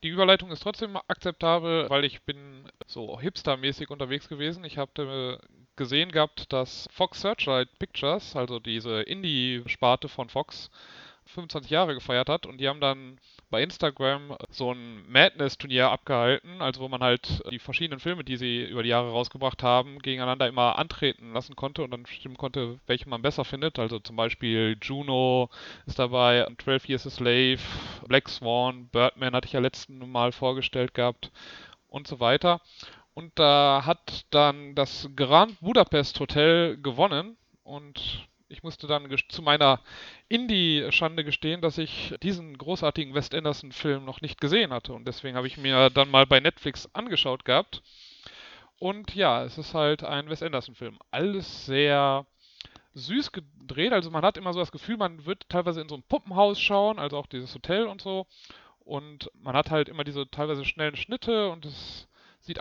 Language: German